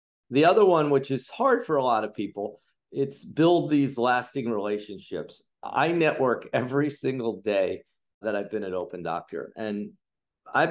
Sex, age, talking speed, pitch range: male, 50-69, 165 wpm, 110-140 Hz